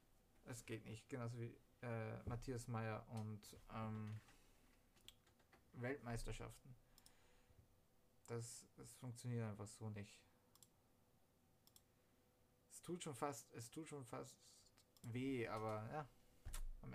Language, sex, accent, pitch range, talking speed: German, male, German, 115-145 Hz, 105 wpm